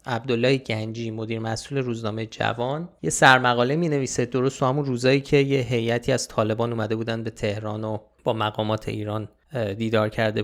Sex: male